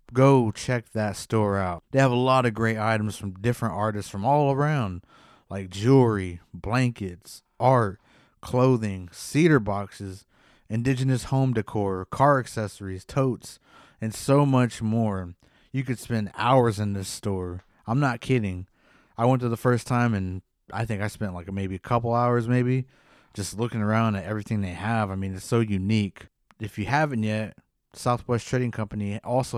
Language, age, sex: English, 30-49, male